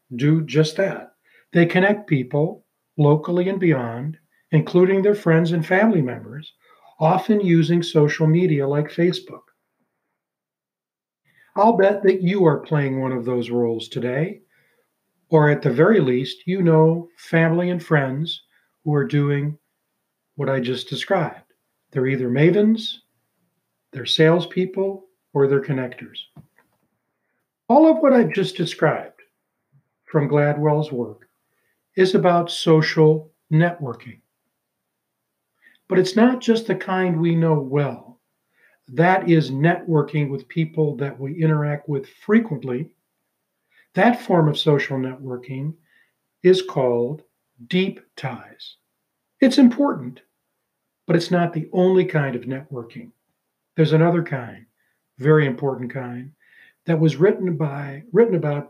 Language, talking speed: English, 125 wpm